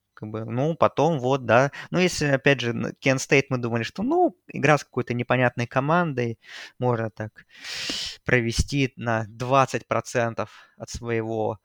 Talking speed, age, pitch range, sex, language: 135 wpm, 20-39, 115-135 Hz, male, Russian